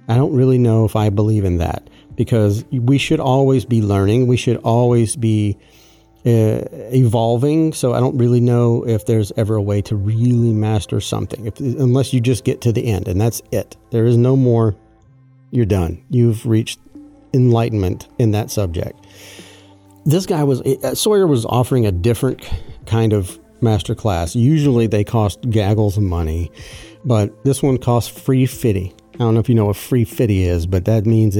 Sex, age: male, 40-59